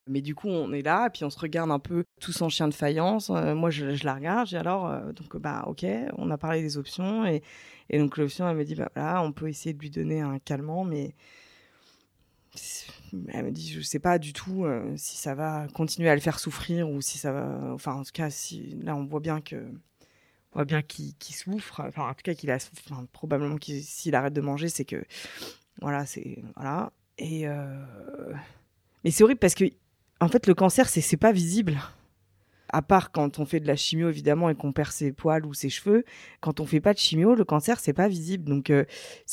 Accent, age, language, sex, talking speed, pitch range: French, 20-39, French, female, 235 wpm, 145-180 Hz